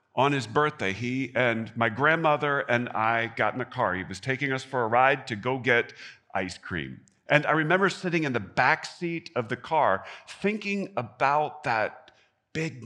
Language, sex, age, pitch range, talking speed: English, male, 50-69, 105-150 Hz, 185 wpm